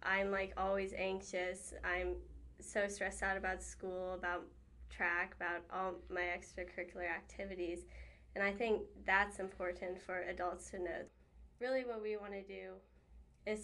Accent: American